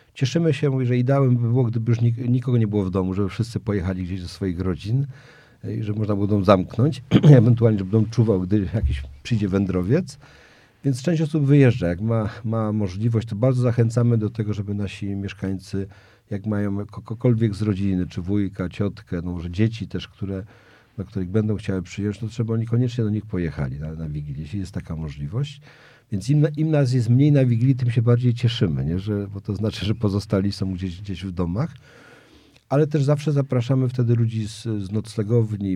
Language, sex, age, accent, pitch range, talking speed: Polish, male, 50-69, native, 95-125 Hz, 190 wpm